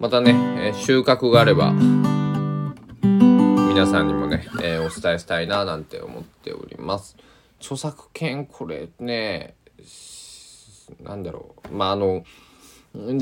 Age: 20-39